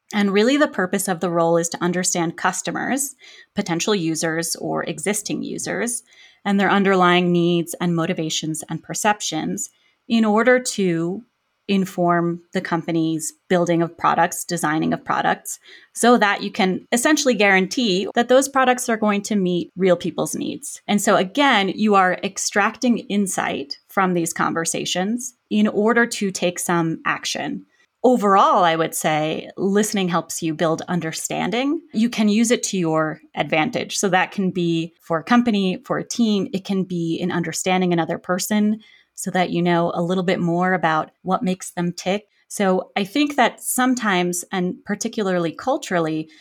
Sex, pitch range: female, 170-215 Hz